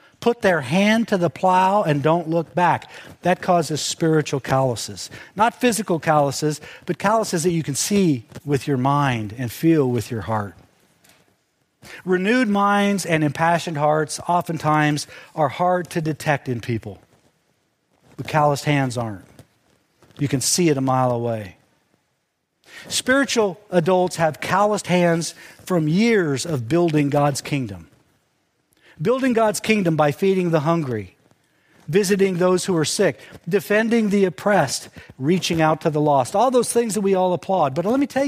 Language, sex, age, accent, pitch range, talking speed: English, male, 50-69, American, 145-200 Hz, 150 wpm